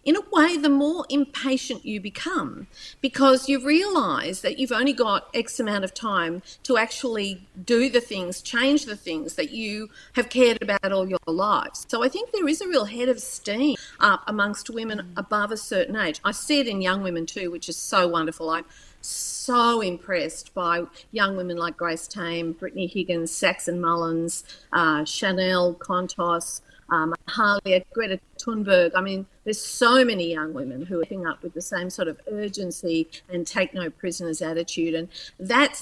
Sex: female